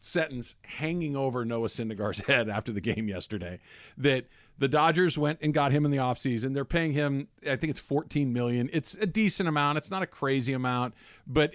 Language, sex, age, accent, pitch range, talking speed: English, male, 50-69, American, 115-150 Hz, 195 wpm